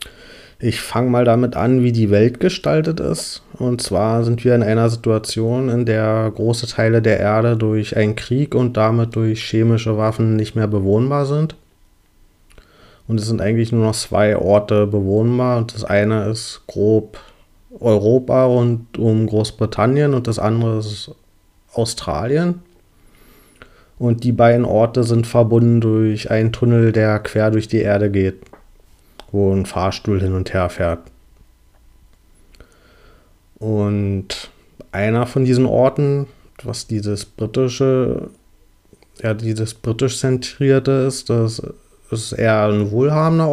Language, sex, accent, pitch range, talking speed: German, male, German, 105-120 Hz, 135 wpm